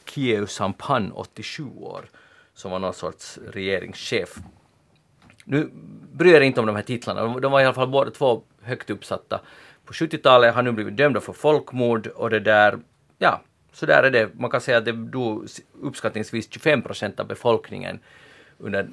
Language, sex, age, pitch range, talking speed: Swedish, male, 40-59, 105-125 Hz, 170 wpm